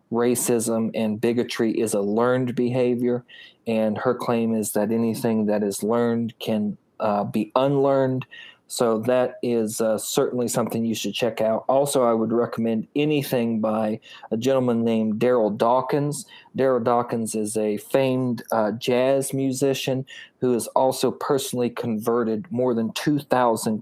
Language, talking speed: English, 145 wpm